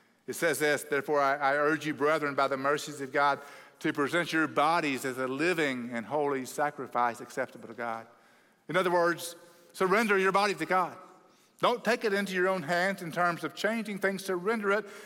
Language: English